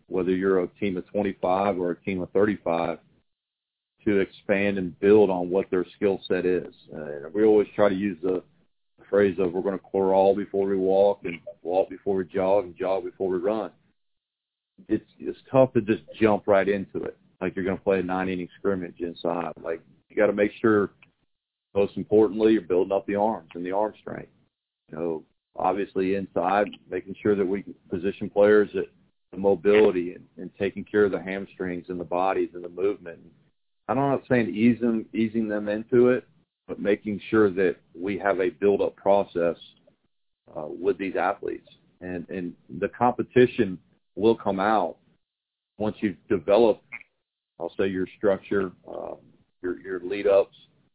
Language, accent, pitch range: English, American, 95-105 Hz